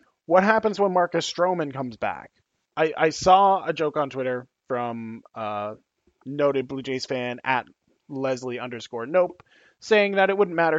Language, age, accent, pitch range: English, 20-39, American, 125-160 Hz